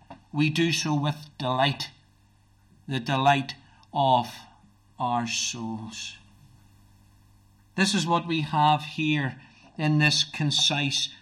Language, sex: English, male